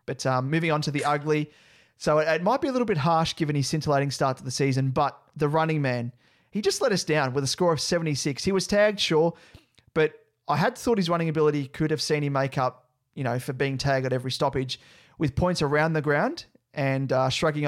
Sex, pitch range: male, 130-160 Hz